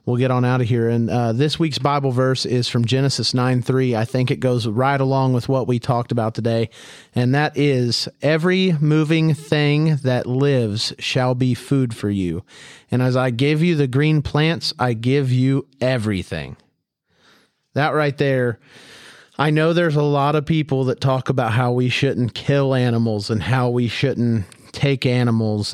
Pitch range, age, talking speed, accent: 115-145 Hz, 30-49, 180 wpm, American